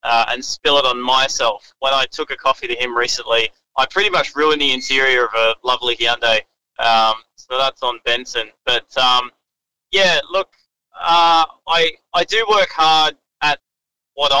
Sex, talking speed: male, 170 wpm